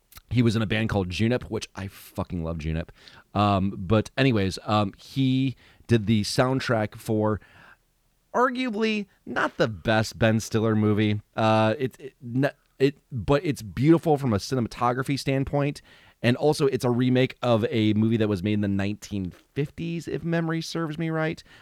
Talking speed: 165 wpm